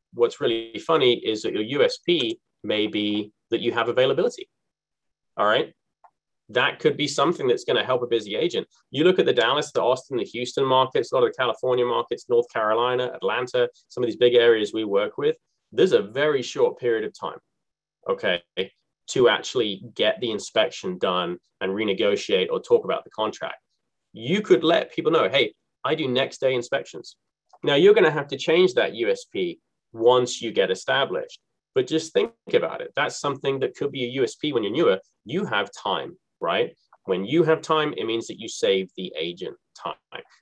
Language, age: English, 20-39